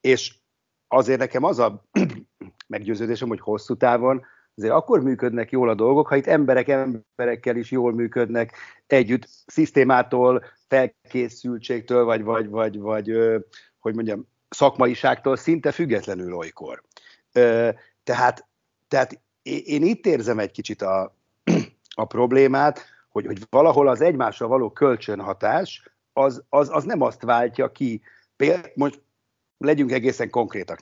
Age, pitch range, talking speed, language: 50-69, 115-145 Hz, 125 wpm, Hungarian